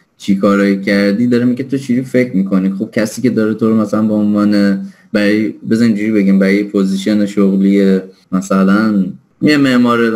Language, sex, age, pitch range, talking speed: Persian, male, 20-39, 100-120 Hz, 165 wpm